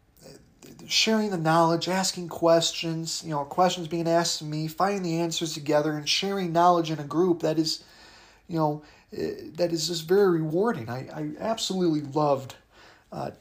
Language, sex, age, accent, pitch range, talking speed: English, male, 30-49, American, 140-170 Hz, 160 wpm